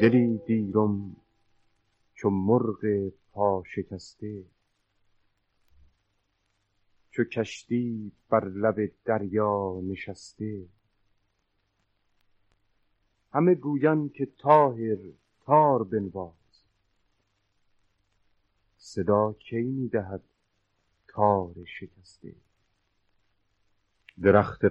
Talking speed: 60 wpm